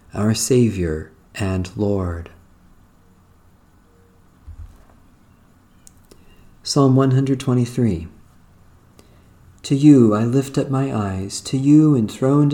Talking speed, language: 75 wpm, English